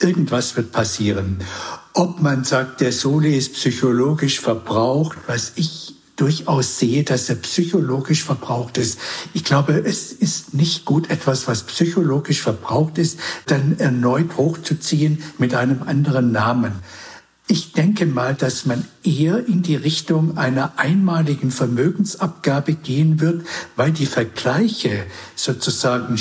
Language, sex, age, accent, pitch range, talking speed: German, male, 60-79, German, 125-165 Hz, 130 wpm